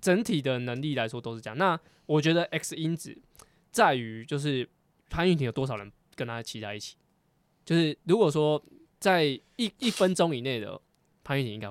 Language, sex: Chinese, male